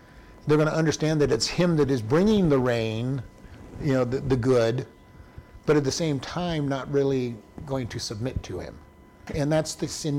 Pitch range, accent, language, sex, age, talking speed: 110-145 Hz, American, English, male, 50-69, 195 wpm